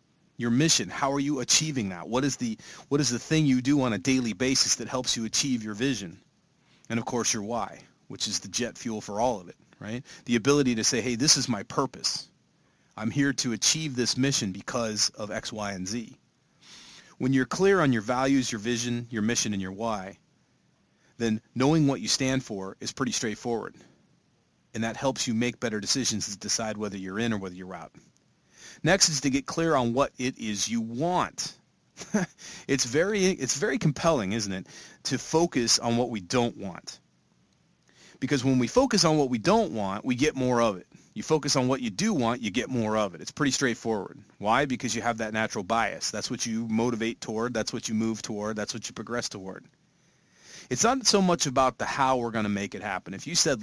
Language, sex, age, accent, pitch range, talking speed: English, male, 30-49, American, 110-140 Hz, 215 wpm